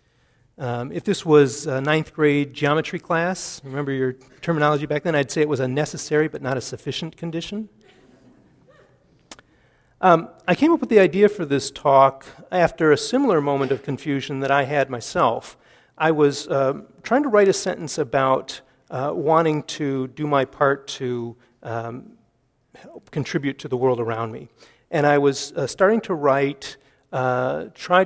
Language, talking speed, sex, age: English, 165 wpm, male, 40-59